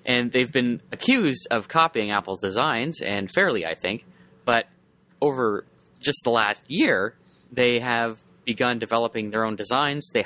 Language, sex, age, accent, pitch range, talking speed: English, male, 20-39, American, 105-140 Hz, 150 wpm